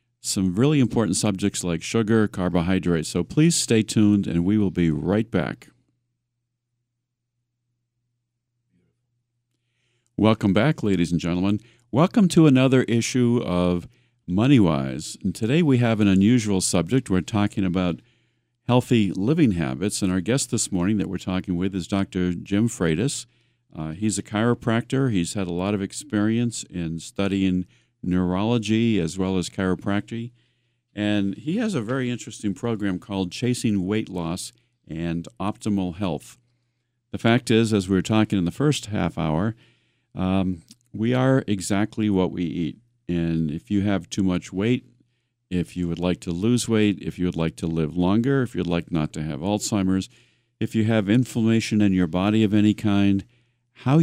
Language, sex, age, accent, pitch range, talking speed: English, male, 50-69, American, 95-120 Hz, 160 wpm